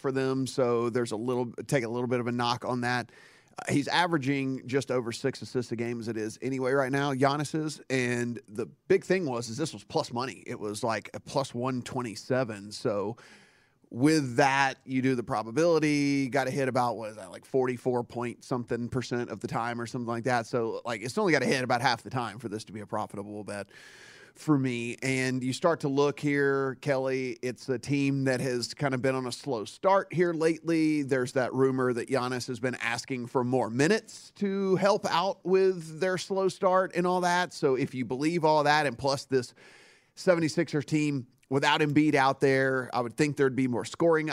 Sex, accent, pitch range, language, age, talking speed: male, American, 120-150 Hz, English, 30-49, 215 wpm